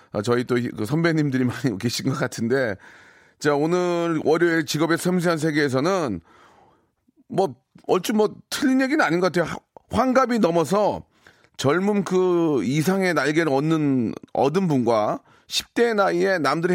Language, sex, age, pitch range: Korean, male, 40-59, 135-200 Hz